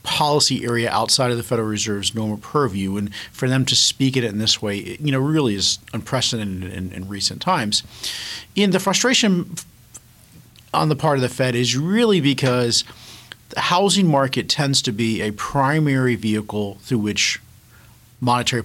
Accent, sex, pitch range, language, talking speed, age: American, male, 110-140 Hz, English, 170 wpm, 40-59